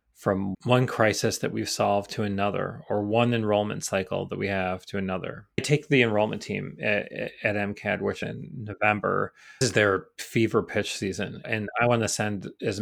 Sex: male